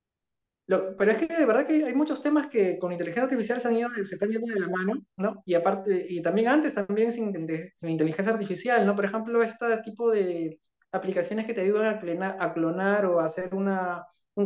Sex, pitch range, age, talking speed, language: male, 170-210 Hz, 30-49, 225 wpm, Spanish